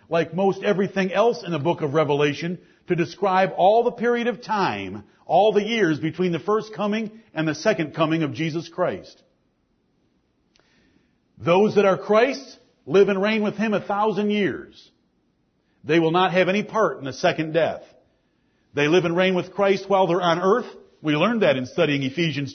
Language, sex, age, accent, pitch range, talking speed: English, male, 50-69, American, 170-215 Hz, 180 wpm